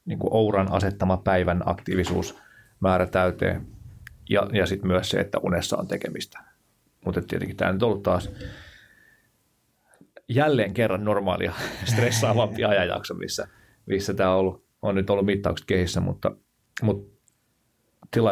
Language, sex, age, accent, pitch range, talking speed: Finnish, male, 30-49, native, 90-110 Hz, 130 wpm